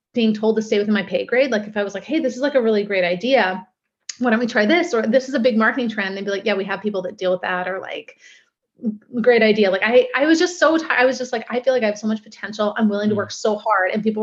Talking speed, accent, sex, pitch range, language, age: 315 wpm, American, female, 210-255 Hz, English, 30-49